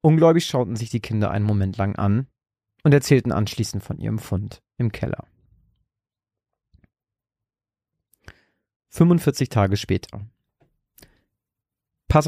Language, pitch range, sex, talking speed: German, 100-125 Hz, male, 105 wpm